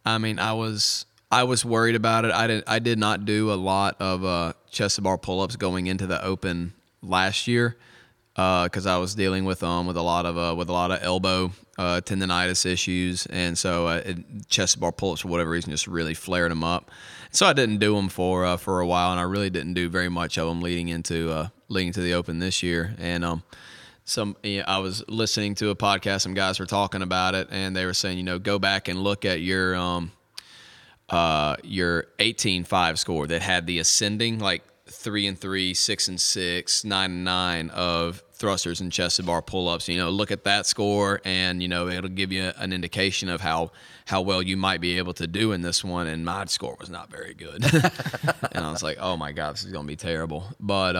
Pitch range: 85-100 Hz